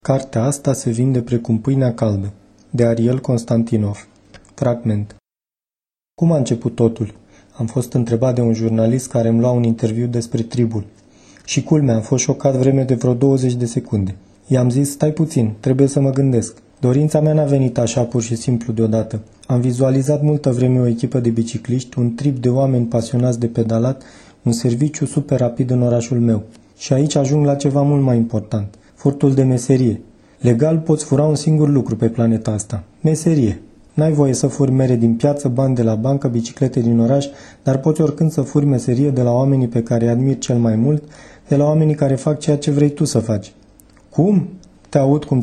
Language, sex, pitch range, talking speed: Romanian, male, 115-145 Hz, 190 wpm